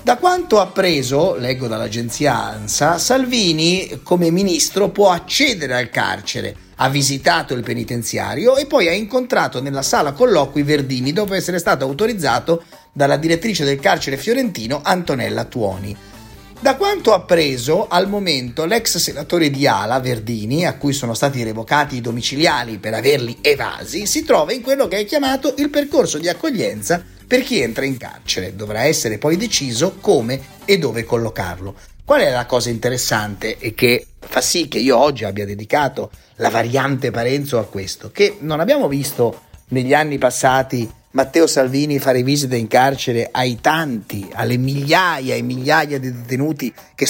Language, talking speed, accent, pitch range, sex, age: Italian, 155 wpm, native, 120-175 Hz, male, 30-49